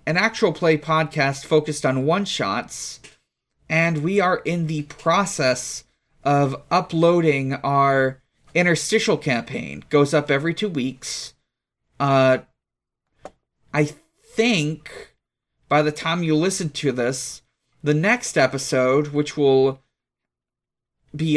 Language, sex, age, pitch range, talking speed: English, male, 30-49, 140-180 Hz, 110 wpm